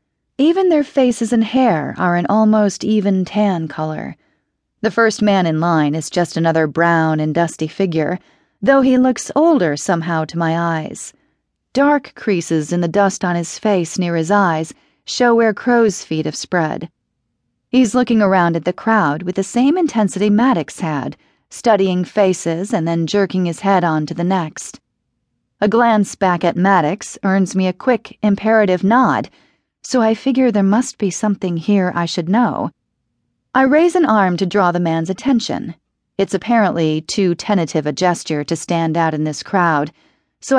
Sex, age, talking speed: female, 40-59, 170 wpm